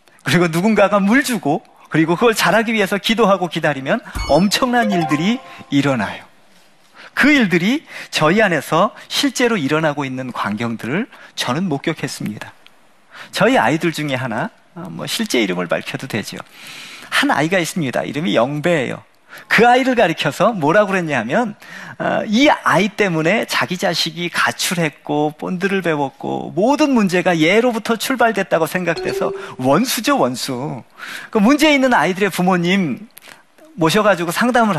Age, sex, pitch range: 40-59, male, 155-235 Hz